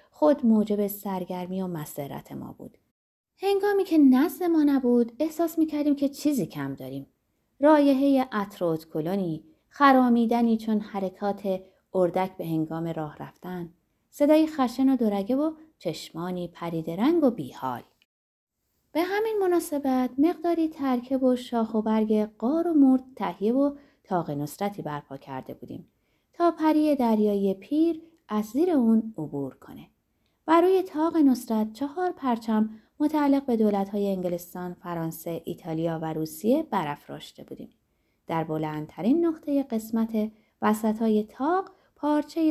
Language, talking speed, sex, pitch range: Persian, 130 wpm, female, 180-295 Hz